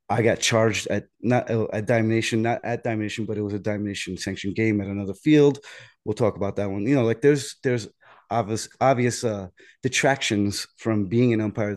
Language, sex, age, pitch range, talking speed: English, male, 30-49, 105-115 Hz, 195 wpm